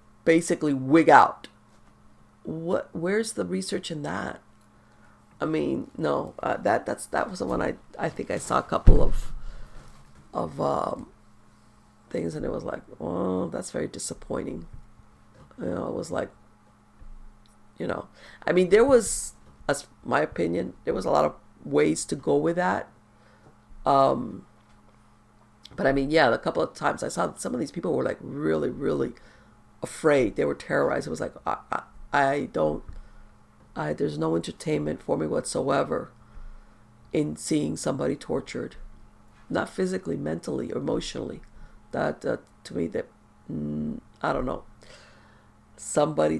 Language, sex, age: English, female, 40-59